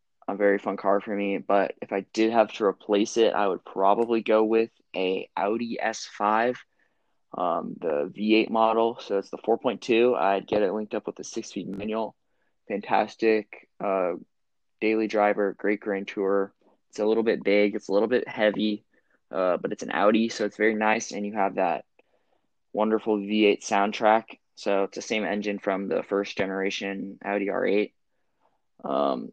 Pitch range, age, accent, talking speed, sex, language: 100-110 Hz, 20-39, American, 170 wpm, male, English